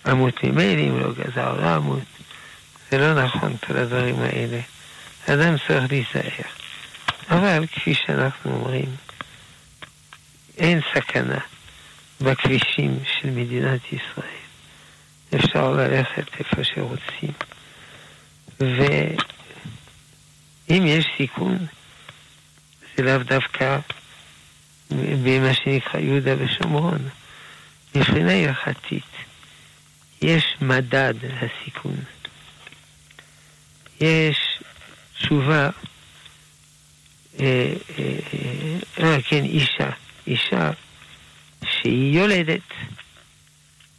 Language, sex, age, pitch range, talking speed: Hebrew, male, 60-79, 120-160 Hz, 75 wpm